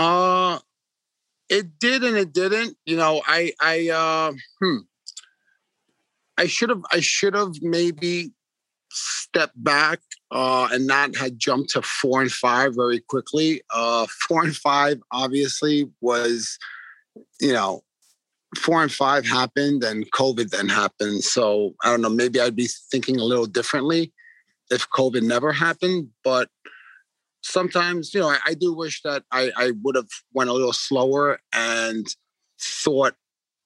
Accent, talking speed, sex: American, 145 wpm, male